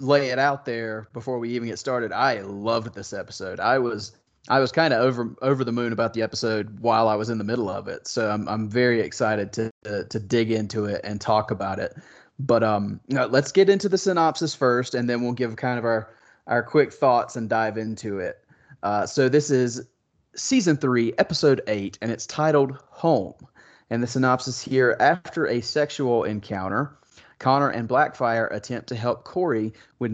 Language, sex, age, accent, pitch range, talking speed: English, male, 30-49, American, 110-135 Hz, 200 wpm